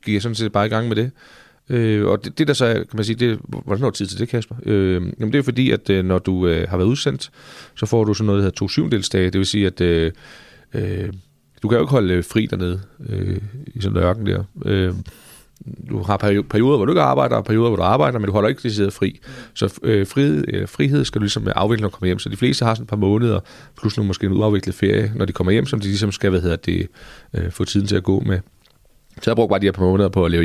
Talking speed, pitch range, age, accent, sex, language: 280 wpm, 95-115 Hz, 30-49, native, male, Danish